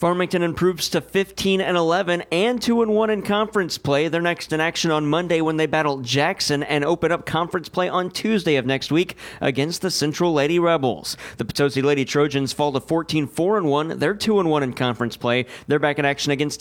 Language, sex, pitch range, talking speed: English, male, 145-175 Hz, 195 wpm